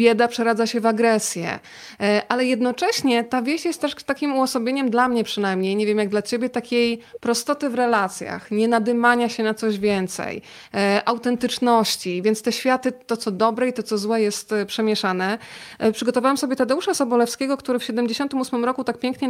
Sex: female